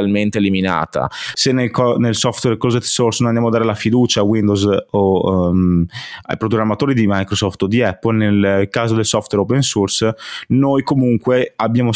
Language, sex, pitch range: Italian, male, 100-125 Hz